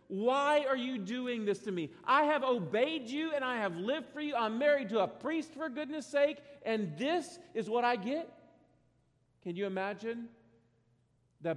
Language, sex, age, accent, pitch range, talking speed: English, male, 40-59, American, 155-225 Hz, 180 wpm